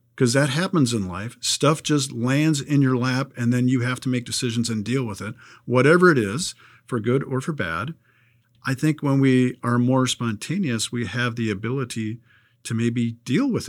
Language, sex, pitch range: English, male, 115-140 Hz